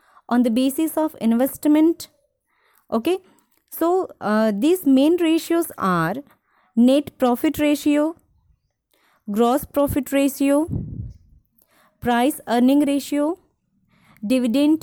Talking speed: 95 wpm